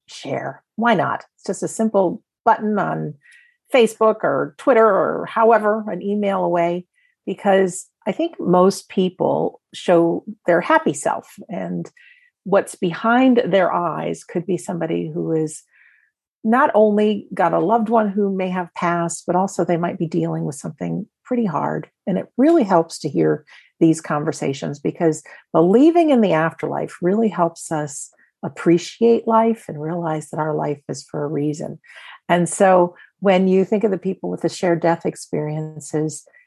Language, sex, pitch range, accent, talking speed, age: English, female, 155-210 Hz, American, 160 wpm, 50-69